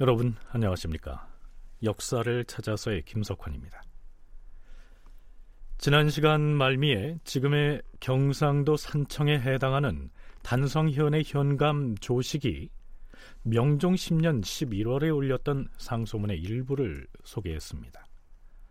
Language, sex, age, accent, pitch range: Korean, male, 40-59, native, 100-150 Hz